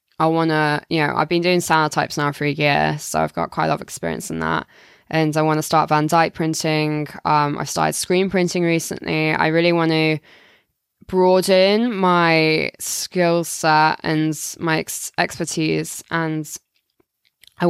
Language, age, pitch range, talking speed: English, 10-29, 150-170 Hz, 170 wpm